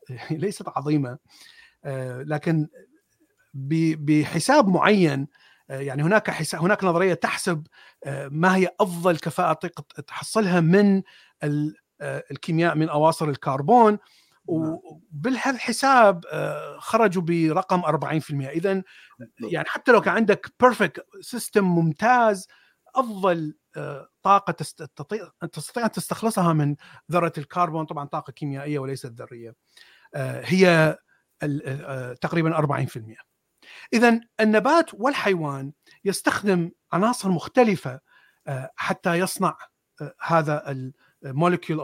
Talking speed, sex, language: 85 wpm, male, Arabic